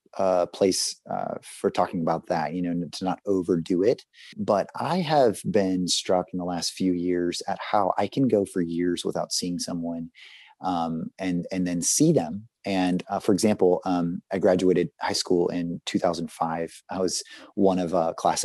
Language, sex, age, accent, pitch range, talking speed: English, male, 30-49, American, 85-95 Hz, 180 wpm